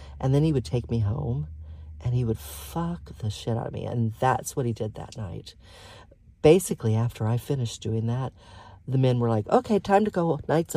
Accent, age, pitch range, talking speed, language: American, 40-59, 95-130 Hz, 210 wpm, English